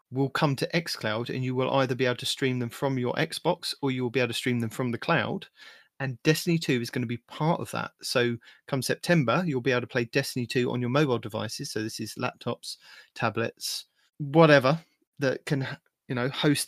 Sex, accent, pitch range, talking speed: male, British, 115-140 Hz, 225 wpm